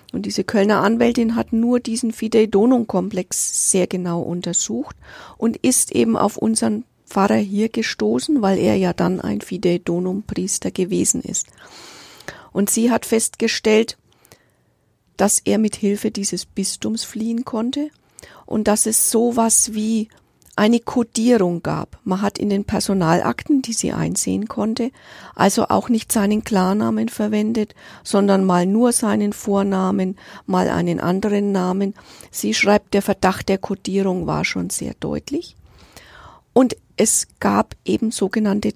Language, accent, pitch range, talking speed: German, German, 195-230 Hz, 135 wpm